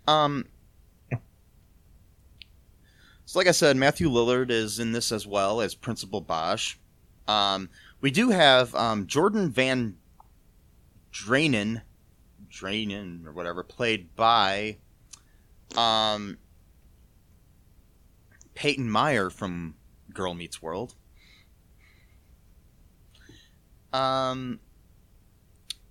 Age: 30-49